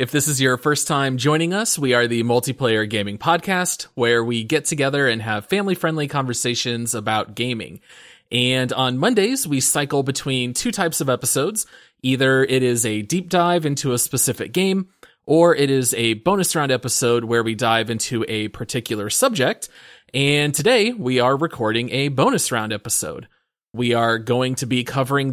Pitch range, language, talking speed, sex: 120-160 Hz, English, 175 wpm, male